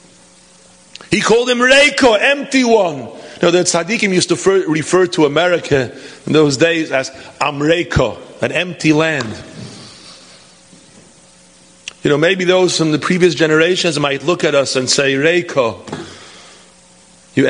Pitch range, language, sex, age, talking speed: 140-175 Hz, English, male, 40-59, 130 wpm